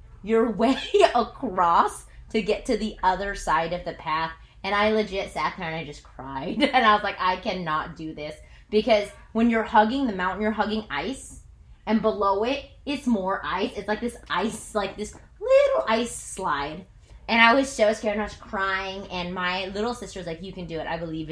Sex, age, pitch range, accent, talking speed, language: female, 20-39, 170-215 Hz, American, 210 wpm, English